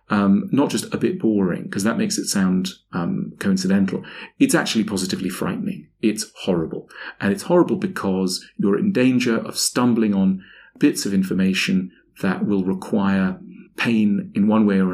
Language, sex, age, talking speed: English, male, 40-59, 160 wpm